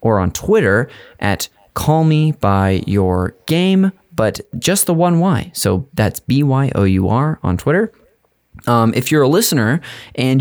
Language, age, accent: English, 20-39, American